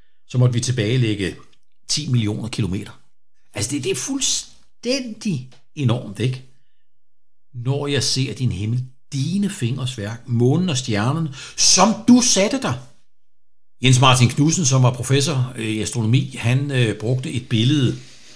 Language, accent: Danish, native